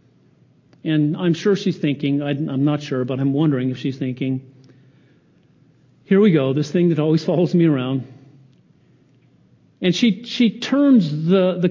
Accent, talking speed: American, 155 wpm